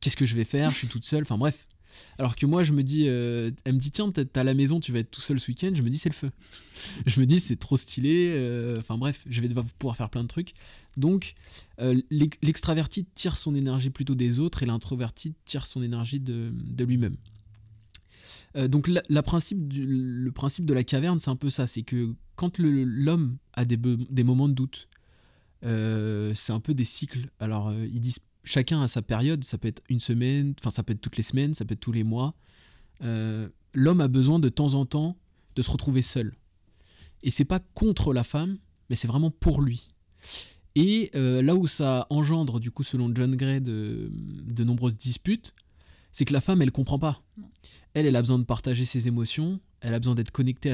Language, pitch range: French, 115-150 Hz